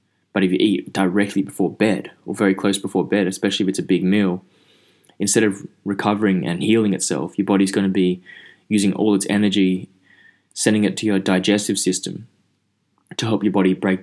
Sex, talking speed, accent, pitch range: male, 190 wpm, Australian, 95-105 Hz